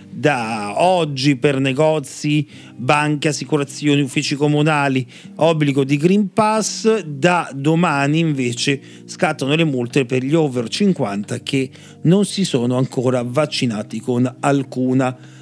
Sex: male